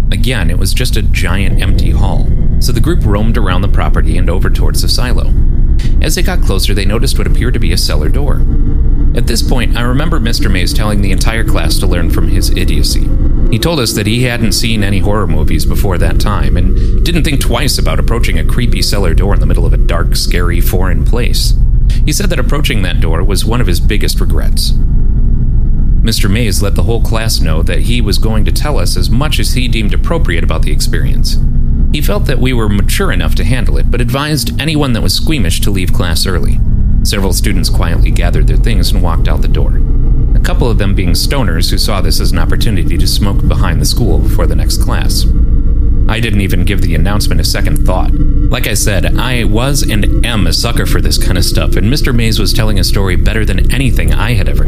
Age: 30-49